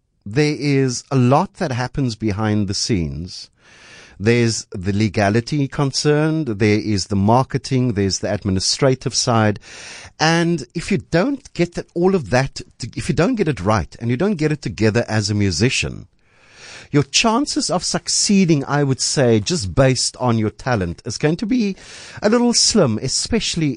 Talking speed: 160 wpm